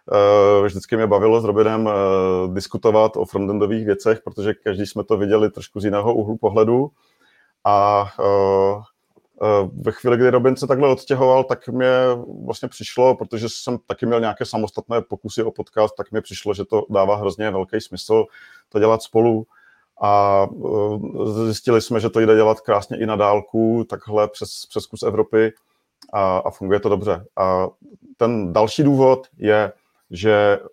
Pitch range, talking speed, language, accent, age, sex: 105-120 Hz, 165 wpm, Czech, native, 40-59, male